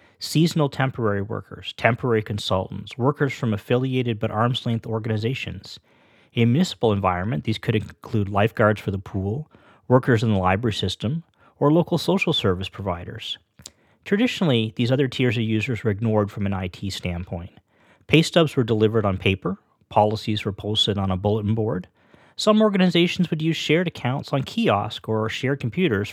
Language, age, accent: English, 40-59, American